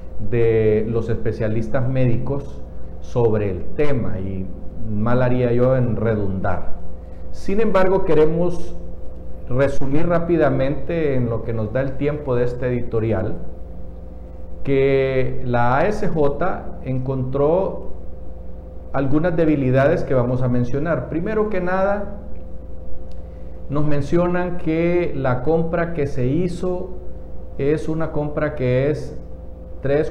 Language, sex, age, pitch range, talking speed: Spanish, male, 50-69, 100-145 Hz, 110 wpm